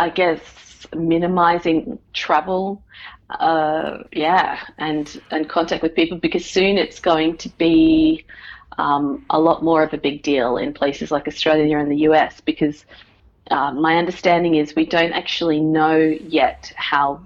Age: 30-49